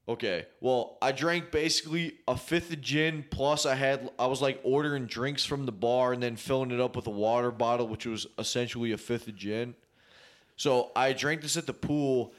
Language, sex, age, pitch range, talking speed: English, male, 20-39, 115-135 Hz, 210 wpm